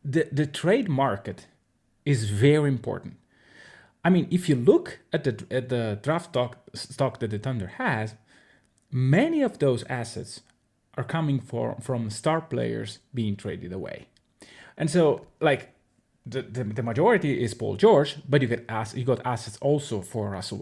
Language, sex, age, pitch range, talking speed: English, male, 30-49, 110-140 Hz, 160 wpm